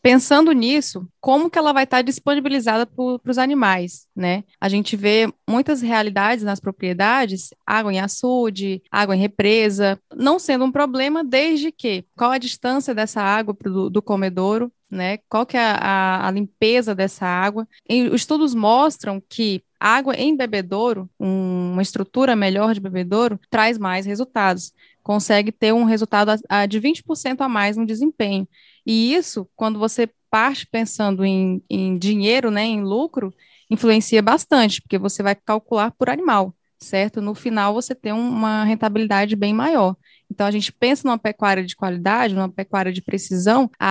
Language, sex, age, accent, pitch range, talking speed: Portuguese, female, 10-29, Brazilian, 200-250 Hz, 160 wpm